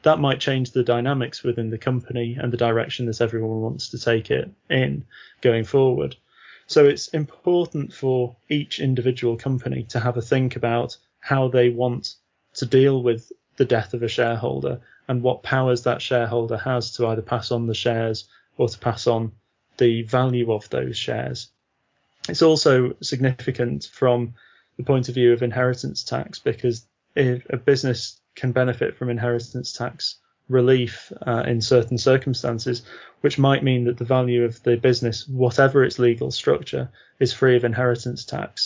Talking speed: 165 wpm